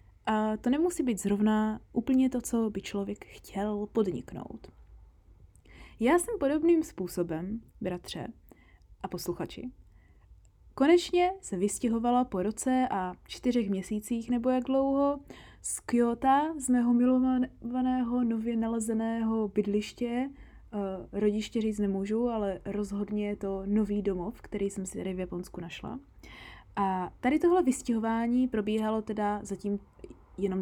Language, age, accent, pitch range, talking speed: Czech, 20-39, native, 190-240 Hz, 120 wpm